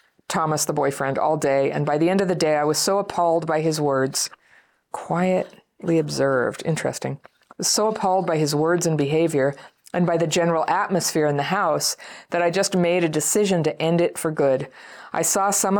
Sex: female